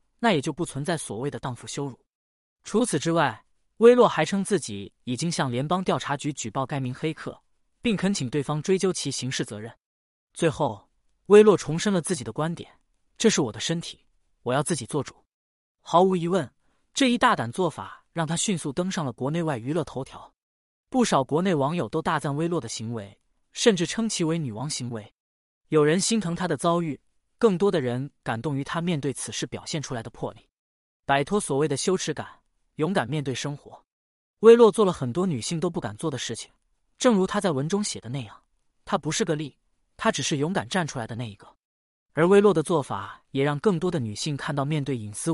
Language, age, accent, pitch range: Chinese, 20-39, native, 130-175 Hz